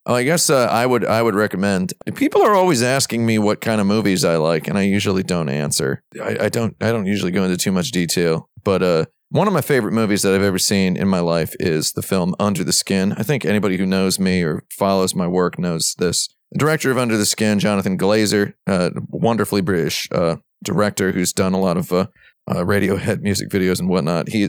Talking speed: 235 wpm